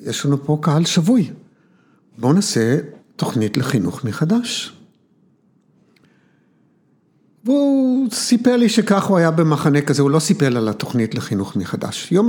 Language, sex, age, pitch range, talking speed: Hebrew, male, 60-79, 115-175 Hz, 125 wpm